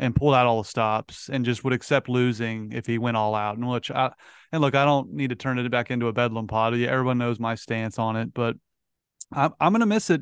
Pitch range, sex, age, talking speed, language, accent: 120-150 Hz, male, 30-49, 265 wpm, English, American